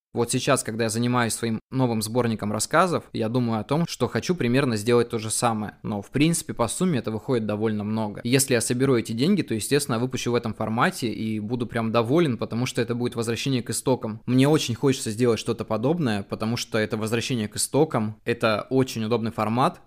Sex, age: male, 20-39